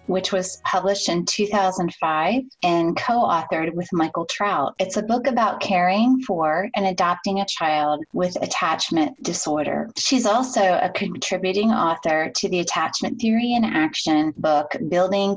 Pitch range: 170-235 Hz